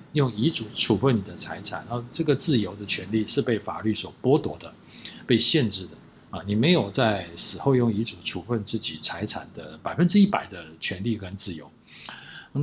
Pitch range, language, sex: 95-120 Hz, Chinese, male